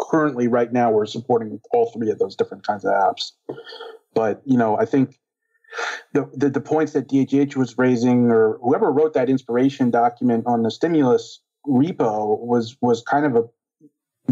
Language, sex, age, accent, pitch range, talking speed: English, male, 40-59, American, 115-145 Hz, 170 wpm